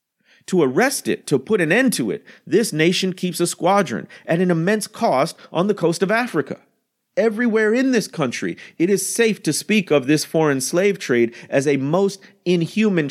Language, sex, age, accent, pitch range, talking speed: English, male, 40-59, American, 140-190 Hz, 190 wpm